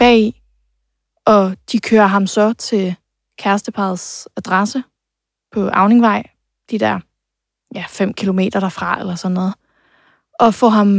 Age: 20-39